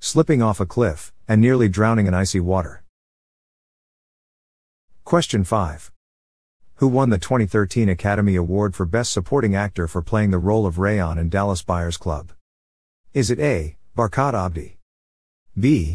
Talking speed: 145 wpm